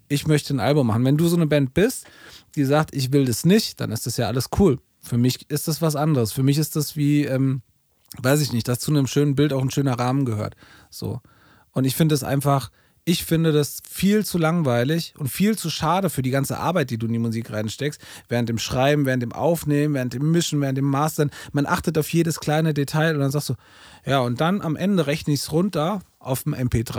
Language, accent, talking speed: German, German, 240 wpm